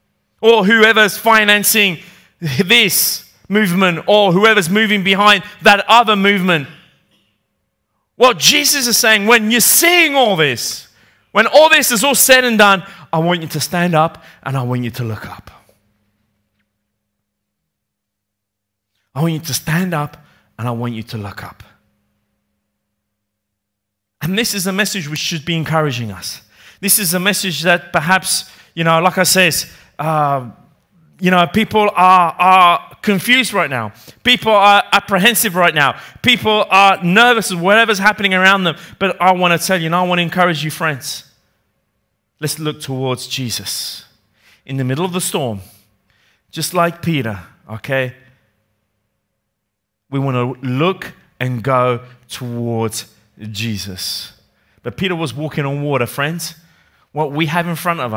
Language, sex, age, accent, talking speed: Italian, male, 30-49, British, 150 wpm